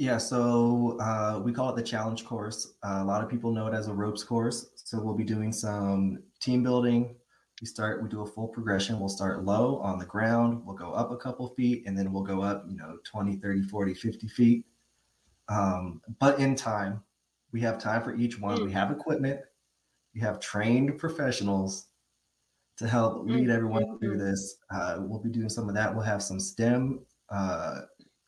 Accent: American